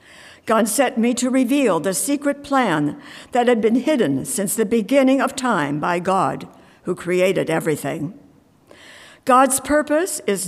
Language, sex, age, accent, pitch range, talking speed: English, female, 60-79, American, 190-260 Hz, 145 wpm